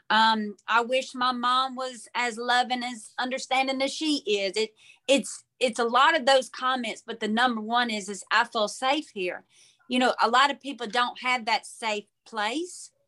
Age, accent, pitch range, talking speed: 30-49, American, 210-265 Hz, 195 wpm